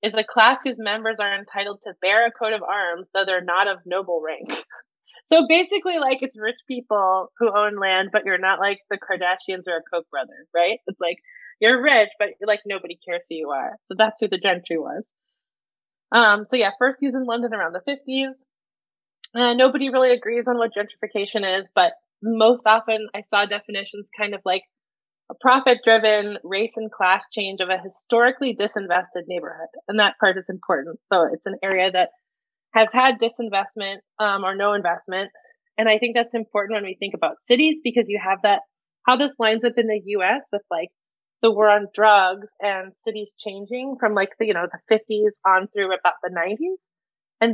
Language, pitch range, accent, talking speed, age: English, 195-240 Hz, American, 195 wpm, 20-39